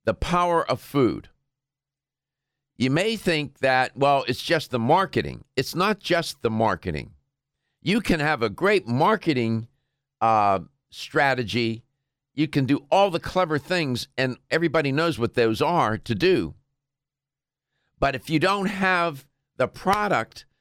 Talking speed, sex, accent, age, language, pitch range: 140 wpm, male, American, 50-69, English, 135-170 Hz